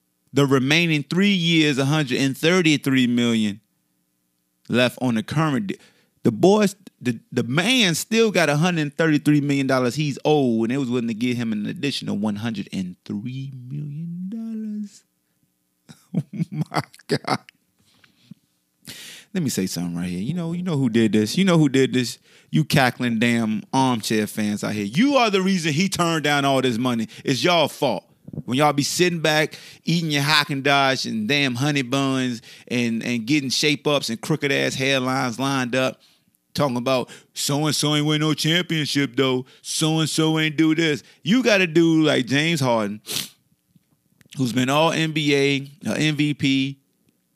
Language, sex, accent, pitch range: English, male, American, 120-170 Hz